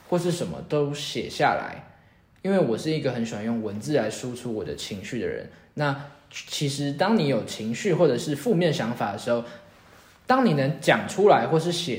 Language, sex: Chinese, male